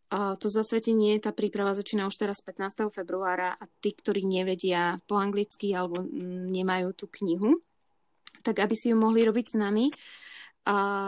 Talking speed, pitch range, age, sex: 155 wpm, 185-220 Hz, 20-39, female